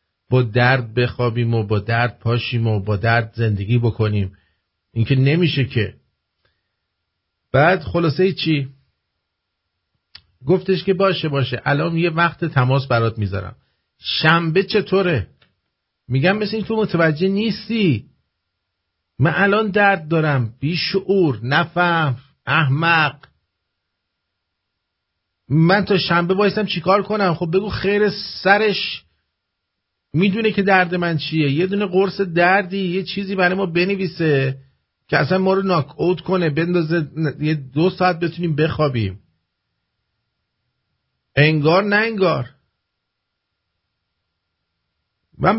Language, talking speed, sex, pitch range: English, 110 wpm, male, 110-175 Hz